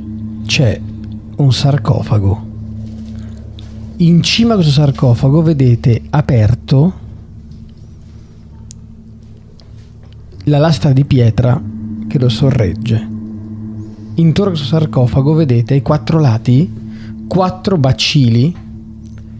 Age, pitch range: 40-59, 110-145 Hz